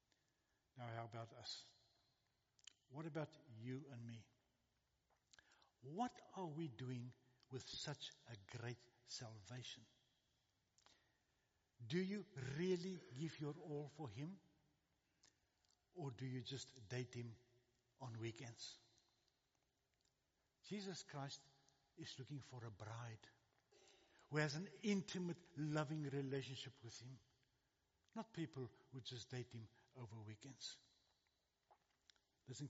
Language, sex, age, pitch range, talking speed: English, male, 60-79, 120-155 Hz, 105 wpm